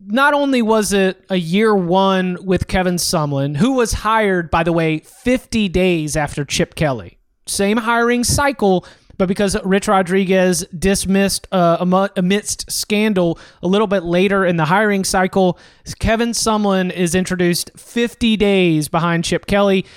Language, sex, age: English, male, 30-49